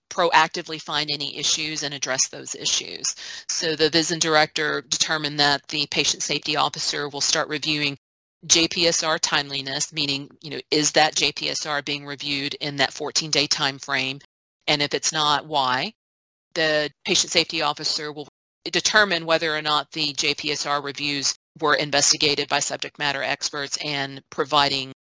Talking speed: 145 wpm